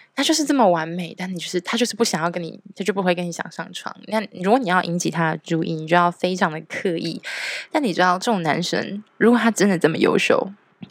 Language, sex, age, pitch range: Chinese, female, 20-39, 170-210 Hz